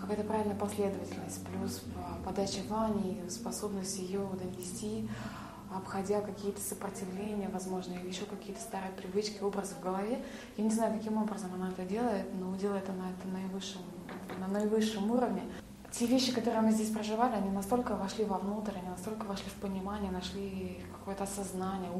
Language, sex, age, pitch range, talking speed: Russian, female, 20-39, 185-205 Hz, 145 wpm